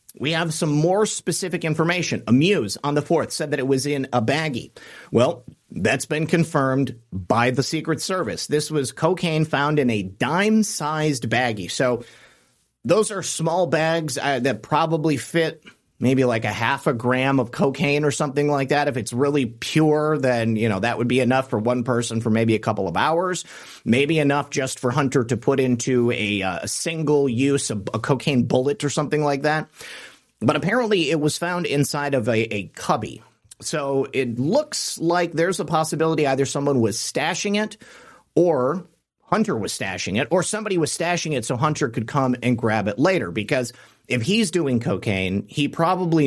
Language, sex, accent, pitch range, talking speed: English, male, American, 120-160 Hz, 185 wpm